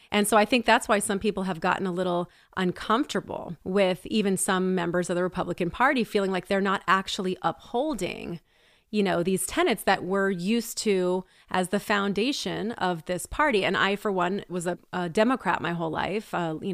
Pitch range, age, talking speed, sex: 180-210 Hz, 30-49, 195 wpm, female